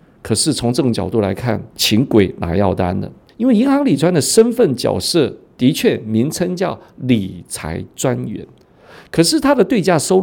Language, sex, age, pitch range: Chinese, male, 50-69, 110-160 Hz